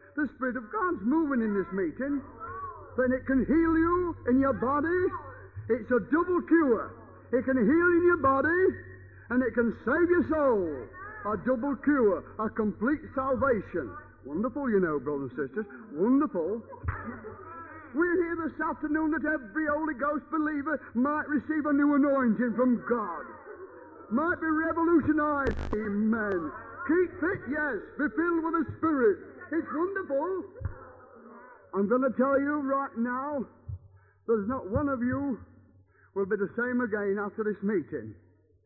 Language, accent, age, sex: English, British, 50-69, male